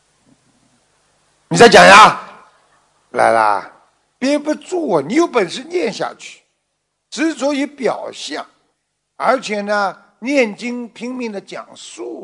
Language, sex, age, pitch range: Chinese, male, 50-69, 180-270 Hz